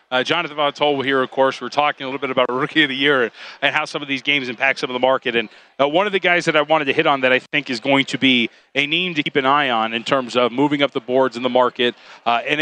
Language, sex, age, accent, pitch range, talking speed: English, male, 30-49, American, 125-155 Hz, 315 wpm